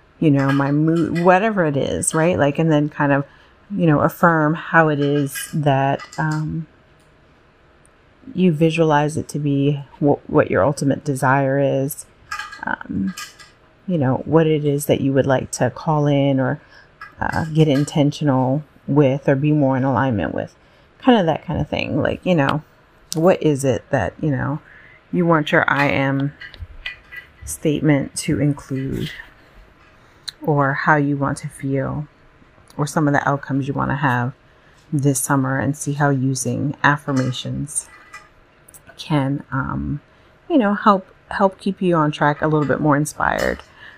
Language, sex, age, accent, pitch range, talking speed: English, female, 30-49, American, 140-165 Hz, 160 wpm